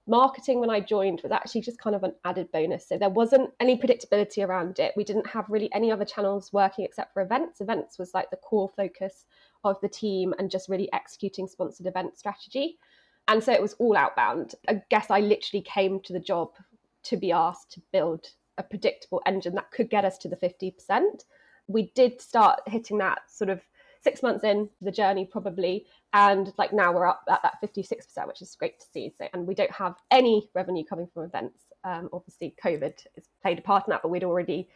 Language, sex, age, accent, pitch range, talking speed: English, female, 20-39, British, 185-230 Hz, 210 wpm